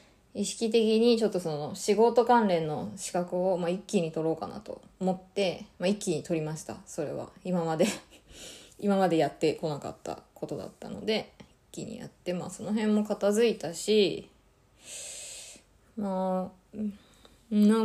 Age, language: 20-39, Japanese